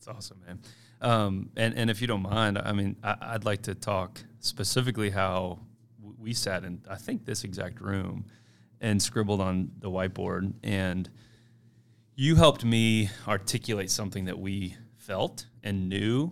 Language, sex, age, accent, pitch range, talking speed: English, male, 30-49, American, 95-115 Hz, 160 wpm